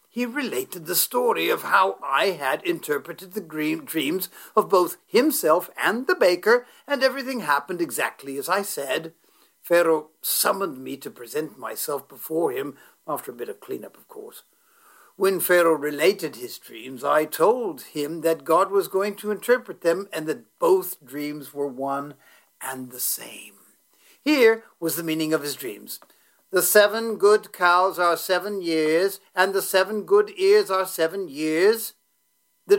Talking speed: 155 wpm